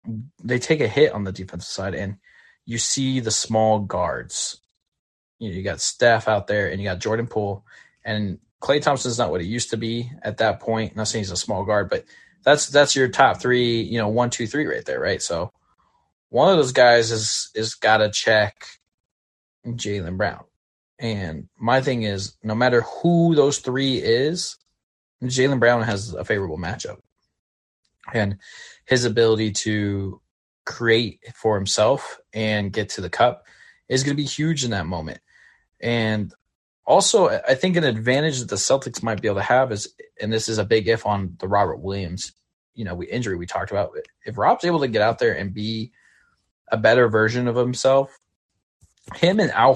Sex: male